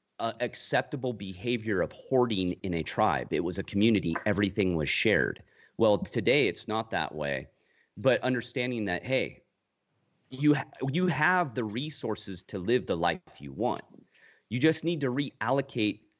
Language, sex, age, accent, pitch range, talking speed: English, male, 30-49, American, 110-150 Hz, 150 wpm